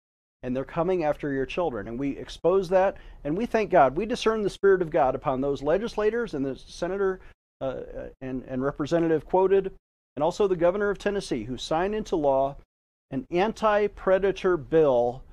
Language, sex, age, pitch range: English, male, 40-59, 135-190 Hz